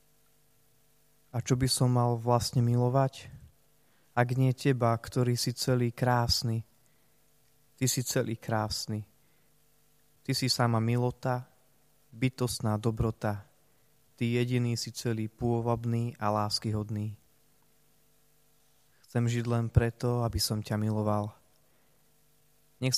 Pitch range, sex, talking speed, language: 115-130 Hz, male, 105 wpm, Slovak